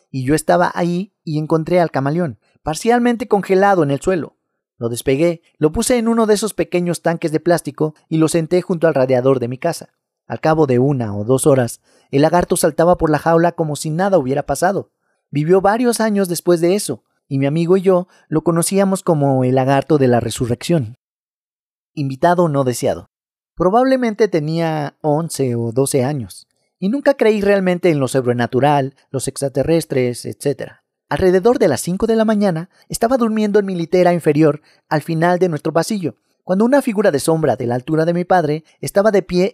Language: Spanish